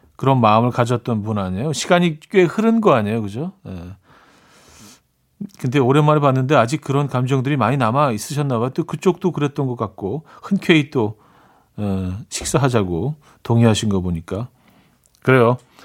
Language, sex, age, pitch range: Korean, male, 40-59, 110-155 Hz